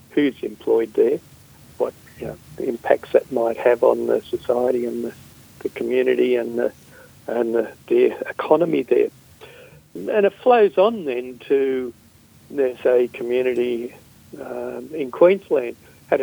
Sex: male